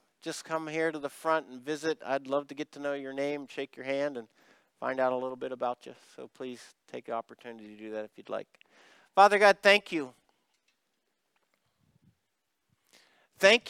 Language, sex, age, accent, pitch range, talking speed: English, male, 50-69, American, 150-200 Hz, 190 wpm